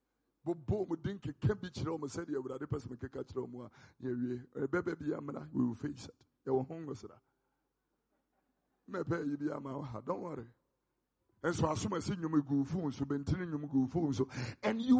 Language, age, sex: English, 50-69, male